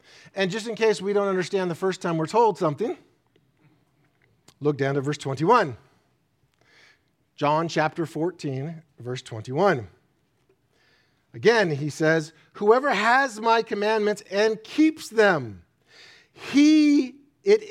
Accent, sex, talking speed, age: American, male, 120 wpm, 40-59